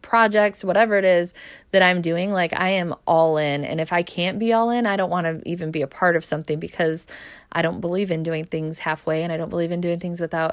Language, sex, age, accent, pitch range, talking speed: English, female, 20-39, American, 170-190 Hz, 255 wpm